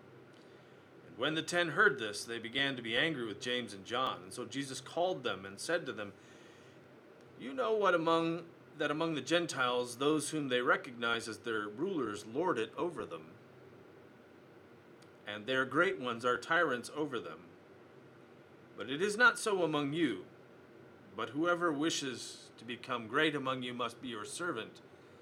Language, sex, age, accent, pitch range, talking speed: English, male, 40-59, American, 115-155 Hz, 165 wpm